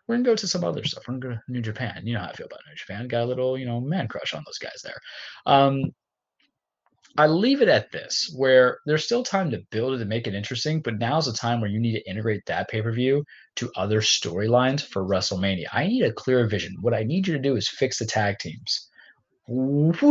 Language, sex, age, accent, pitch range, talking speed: English, male, 20-39, American, 110-170 Hz, 250 wpm